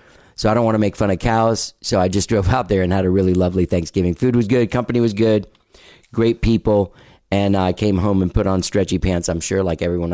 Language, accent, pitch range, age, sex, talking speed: English, American, 85-105 Hz, 40-59, male, 250 wpm